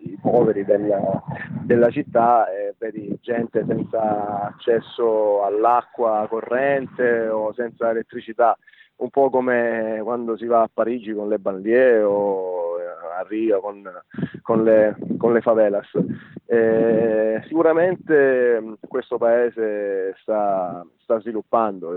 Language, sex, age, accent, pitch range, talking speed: Italian, male, 30-49, native, 105-120 Hz, 105 wpm